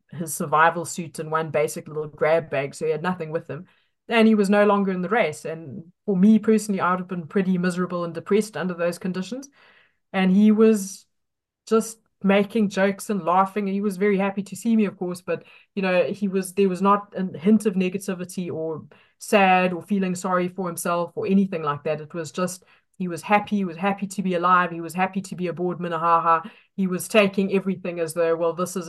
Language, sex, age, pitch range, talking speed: English, female, 20-39, 170-205 Hz, 220 wpm